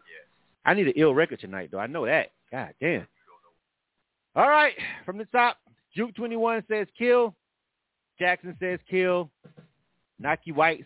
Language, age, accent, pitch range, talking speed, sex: English, 30-49, American, 130-205 Hz, 140 wpm, male